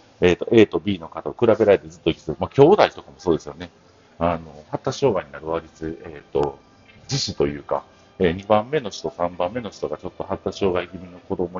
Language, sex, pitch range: Japanese, male, 80-140 Hz